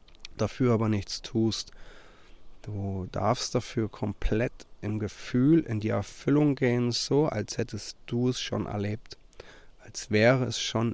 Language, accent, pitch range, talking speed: German, German, 105-125 Hz, 135 wpm